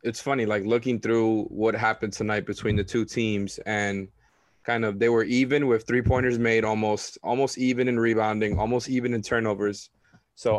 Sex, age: male, 20-39